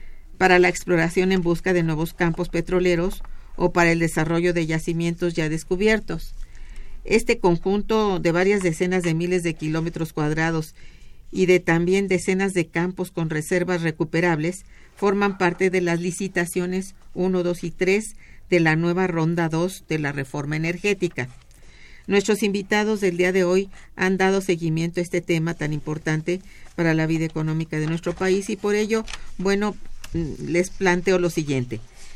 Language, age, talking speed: Spanish, 50-69, 155 wpm